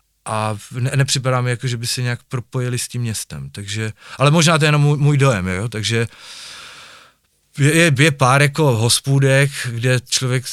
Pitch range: 115-135 Hz